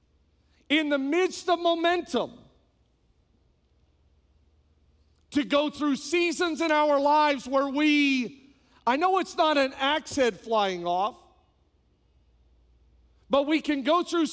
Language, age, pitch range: English, 40-59, 250-335 Hz